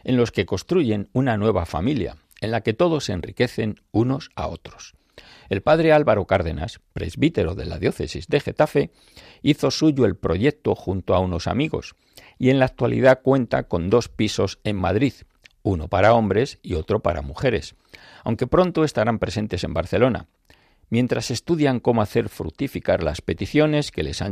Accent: Spanish